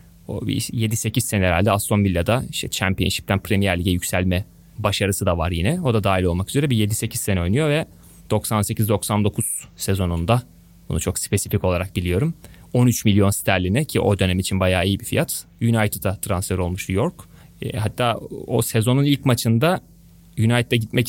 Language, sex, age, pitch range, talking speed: Turkish, male, 30-49, 95-120 Hz, 155 wpm